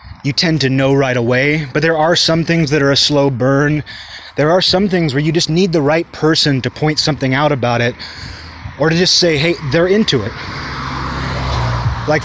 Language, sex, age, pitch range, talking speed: English, male, 20-39, 130-165 Hz, 205 wpm